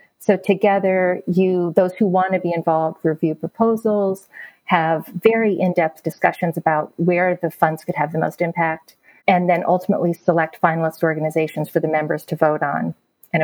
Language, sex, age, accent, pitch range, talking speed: English, female, 30-49, American, 180-215 Hz, 165 wpm